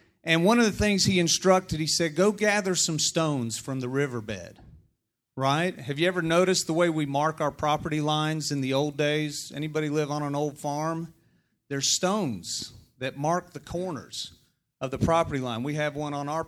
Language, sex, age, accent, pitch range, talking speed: English, male, 40-59, American, 135-180 Hz, 195 wpm